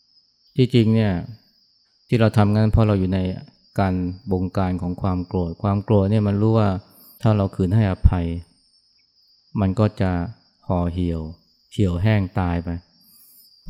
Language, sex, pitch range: Thai, male, 95-110 Hz